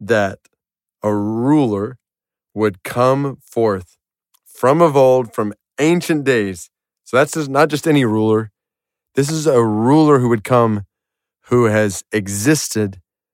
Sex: male